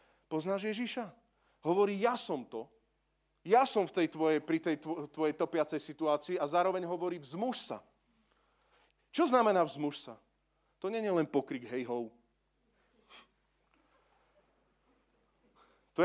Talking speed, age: 125 wpm, 40-59